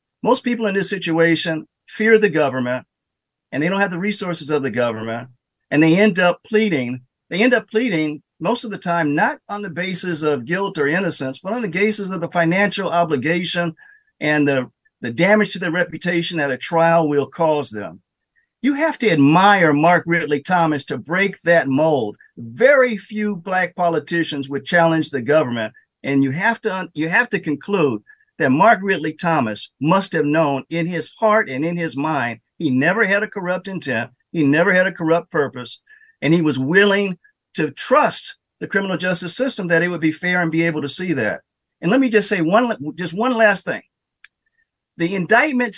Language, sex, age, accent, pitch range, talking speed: English, male, 50-69, American, 150-205 Hz, 185 wpm